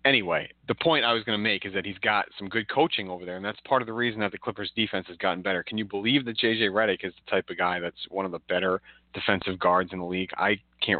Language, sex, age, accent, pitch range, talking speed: English, male, 30-49, American, 90-110 Hz, 290 wpm